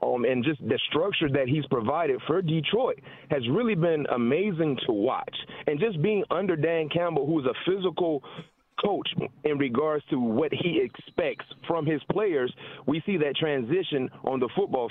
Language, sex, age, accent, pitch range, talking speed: English, male, 30-49, American, 150-215 Hz, 175 wpm